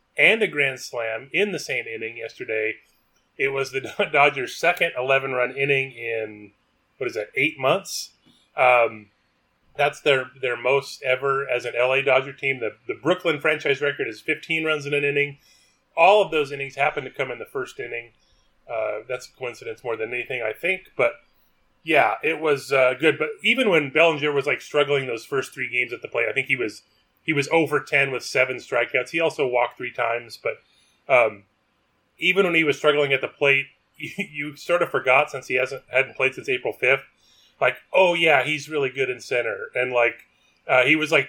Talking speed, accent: 200 wpm, American